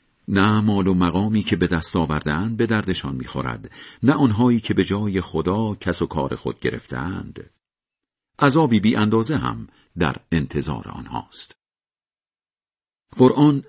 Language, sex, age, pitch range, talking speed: Persian, male, 50-69, 80-110 Hz, 125 wpm